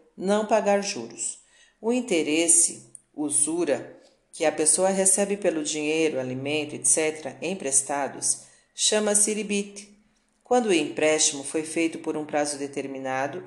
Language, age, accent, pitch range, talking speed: Portuguese, 40-59, Brazilian, 155-200 Hz, 115 wpm